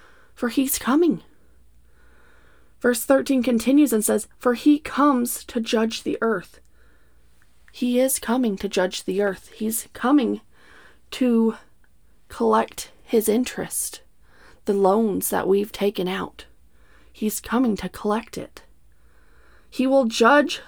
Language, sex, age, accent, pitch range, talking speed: English, female, 30-49, American, 180-240 Hz, 120 wpm